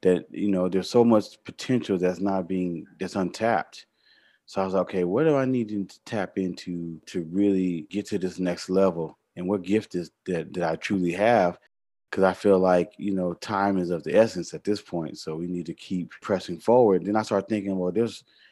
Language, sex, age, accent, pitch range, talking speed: English, male, 30-49, American, 90-100 Hz, 215 wpm